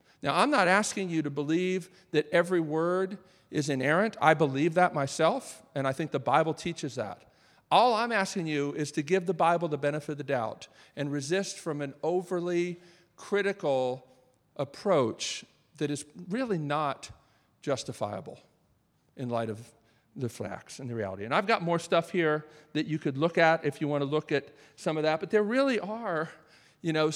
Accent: American